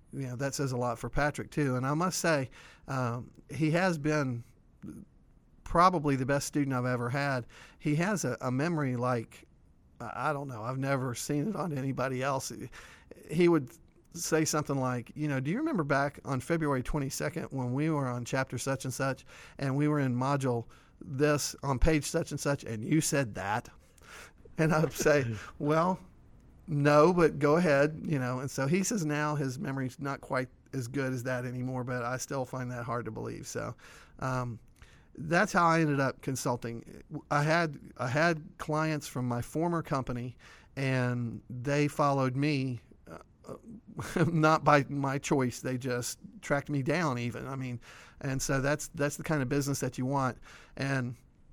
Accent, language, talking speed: American, English, 180 wpm